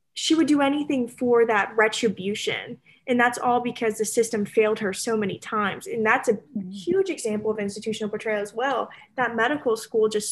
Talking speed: 185 wpm